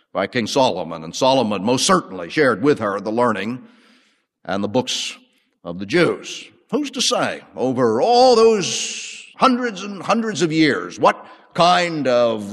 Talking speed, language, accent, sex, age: 155 wpm, English, American, male, 50-69